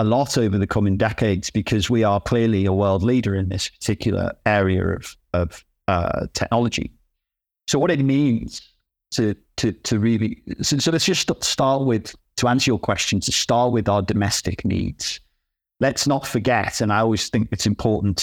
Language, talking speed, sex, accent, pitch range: English, 180 wpm, male, British, 100-125 Hz